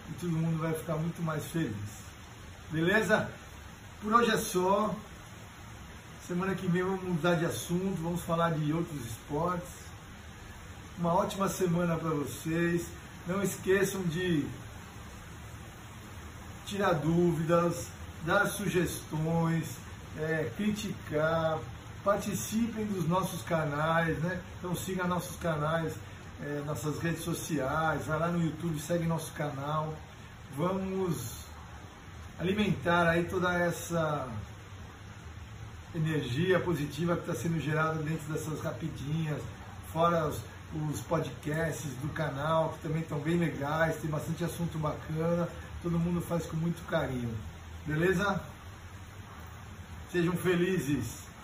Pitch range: 110-170 Hz